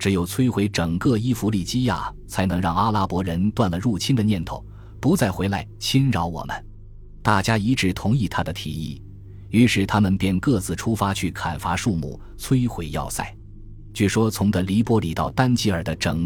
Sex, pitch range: male, 85-110 Hz